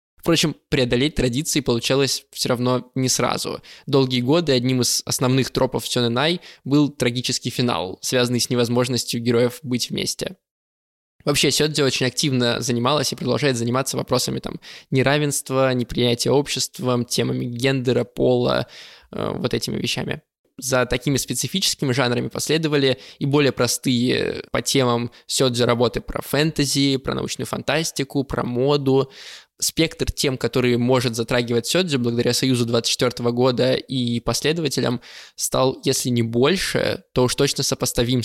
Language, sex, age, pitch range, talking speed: Russian, male, 20-39, 120-140 Hz, 130 wpm